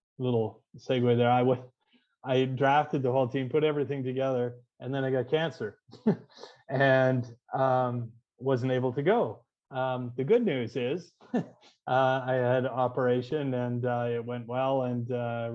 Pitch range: 120-135 Hz